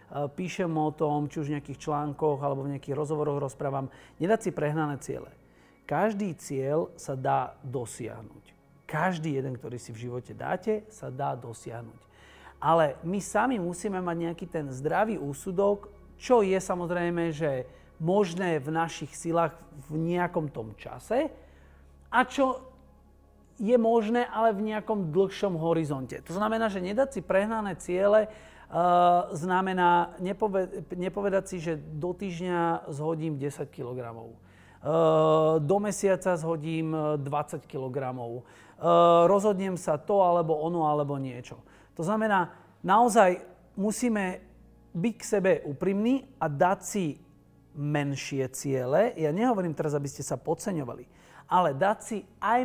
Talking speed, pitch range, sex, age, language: 130 wpm, 145-195 Hz, male, 40-59, Slovak